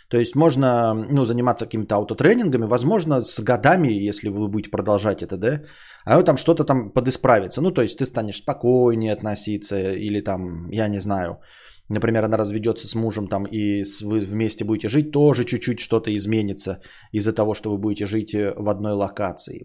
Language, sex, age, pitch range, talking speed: Bulgarian, male, 20-39, 105-140 Hz, 175 wpm